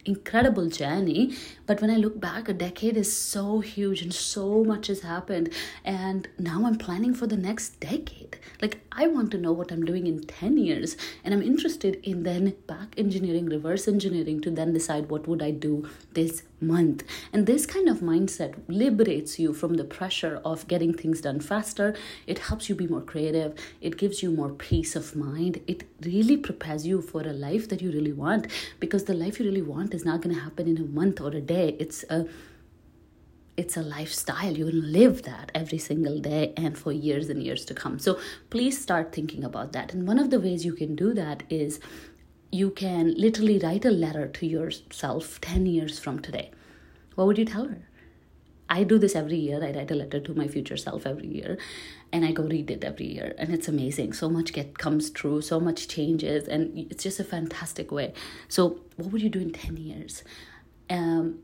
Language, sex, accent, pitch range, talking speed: English, female, Indian, 155-195 Hz, 205 wpm